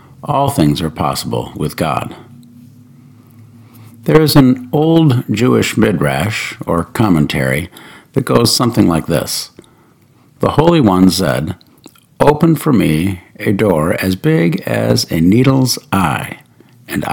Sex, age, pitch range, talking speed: male, 60-79, 100-140 Hz, 125 wpm